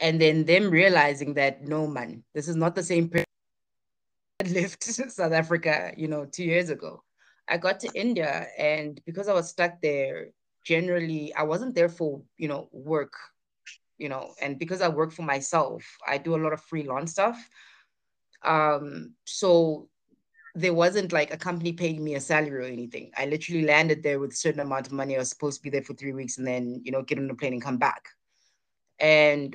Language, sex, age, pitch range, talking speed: English, female, 20-39, 135-160 Hz, 205 wpm